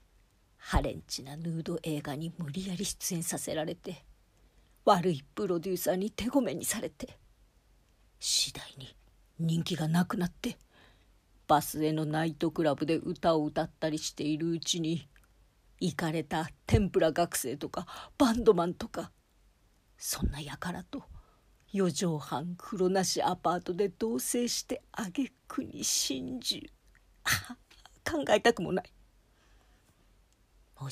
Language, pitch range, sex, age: Japanese, 140-190 Hz, female, 40-59